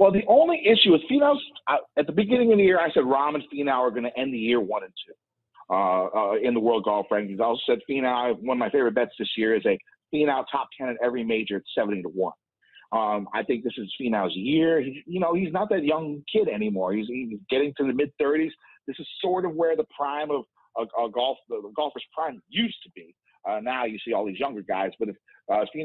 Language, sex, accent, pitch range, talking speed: English, male, American, 120-165 Hz, 255 wpm